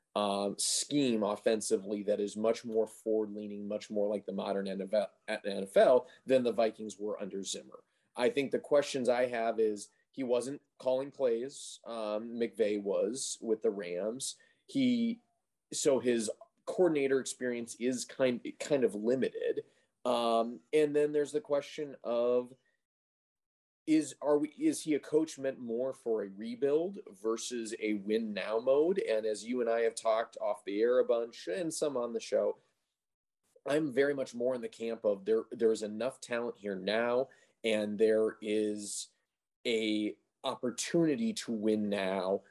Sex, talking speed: male, 160 wpm